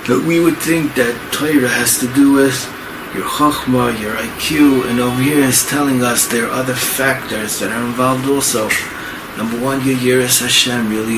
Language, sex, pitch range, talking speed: English, male, 110-130 Hz, 185 wpm